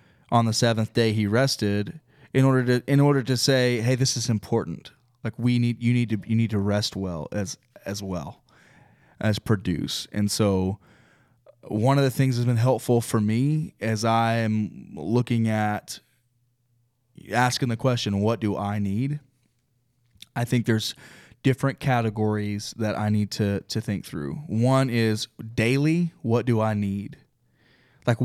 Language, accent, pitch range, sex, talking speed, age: English, American, 105-125 Hz, male, 160 wpm, 20-39